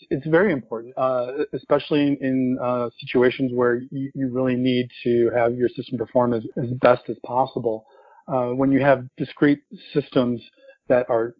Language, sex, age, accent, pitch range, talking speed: English, male, 40-59, American, 120-135 Hz, 165 wpm